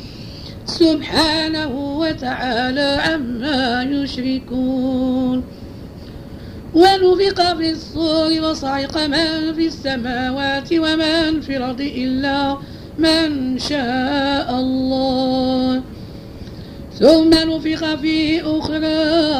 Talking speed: 70 wpm